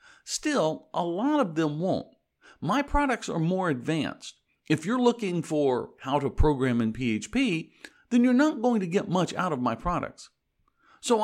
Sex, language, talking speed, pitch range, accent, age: male, English, 170 wpm, 130-210 Hz, American, 60-79